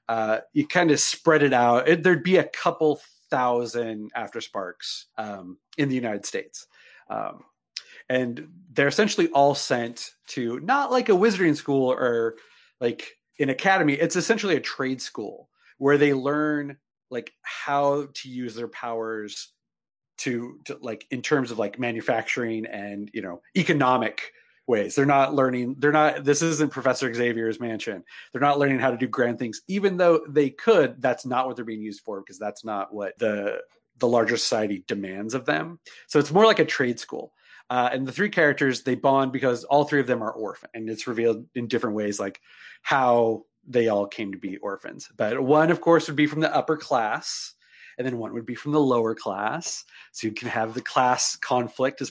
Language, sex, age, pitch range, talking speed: English, male, 30-49, 120-150 Hz, 190 wpm